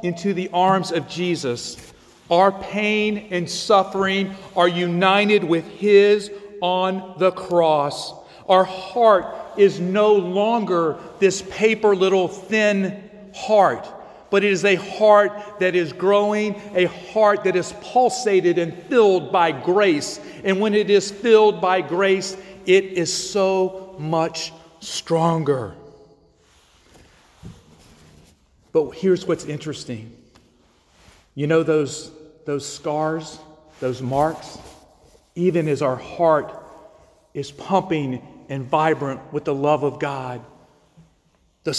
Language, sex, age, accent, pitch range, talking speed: English, male, 40-59, American, 160-200 Hz, 115 wpm